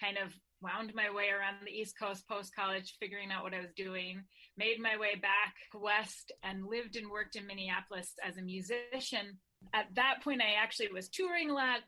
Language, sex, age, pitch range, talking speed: English, female, 30-49, 190-235 Hz, 195 wpm